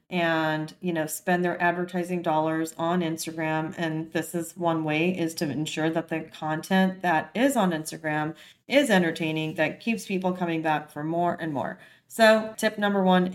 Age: 30-49